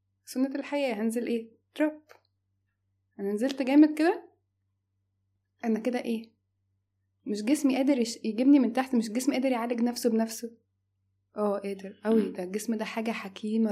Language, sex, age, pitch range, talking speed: Arabic, female, 20-39, 190-240 Hz, 150 wpm